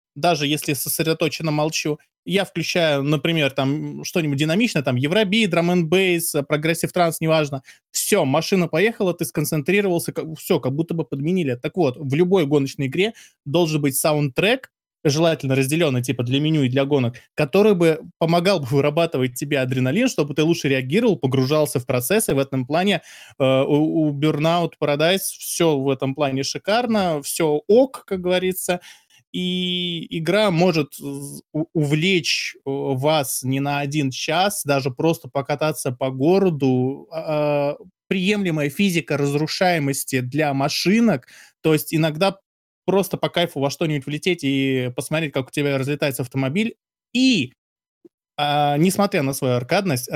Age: 20-39